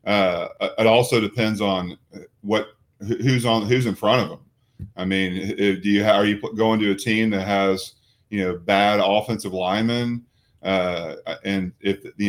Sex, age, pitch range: male, 30-49, 95-110 Hz